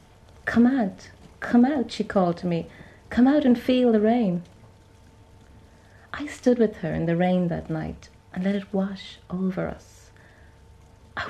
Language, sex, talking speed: English, female, 160 wpm